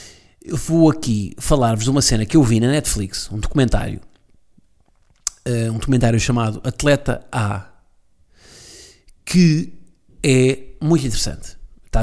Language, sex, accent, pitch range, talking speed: Portuguese, male, Portuguese, 110-145 Hz, 120 wpm